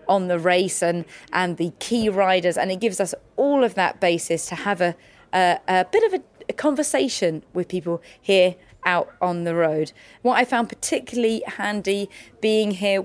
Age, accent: 30-49, British